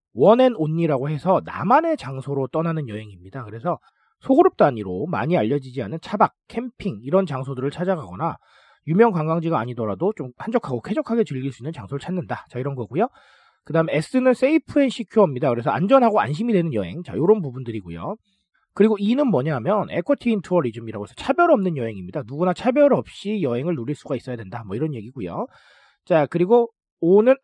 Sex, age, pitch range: male, 40-59, 130-215 Hz